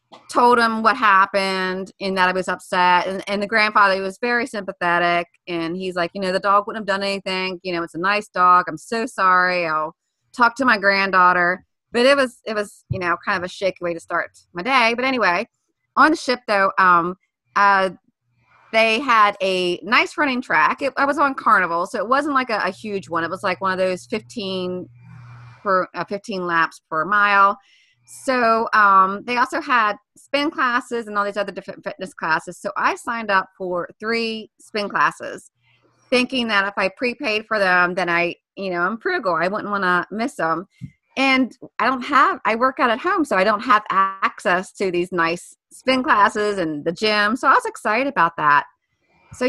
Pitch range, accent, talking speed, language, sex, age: 180-235 Hz, American, 205 wpm, English, female, 30-49